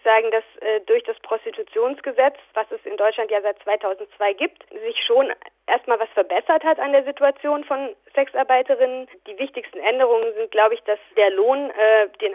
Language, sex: German, female